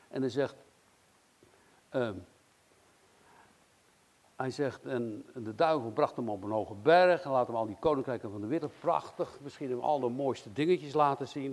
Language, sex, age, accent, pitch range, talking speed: Dutch, male, 60-79, Dutch, 115-155 Hz, 170 wpm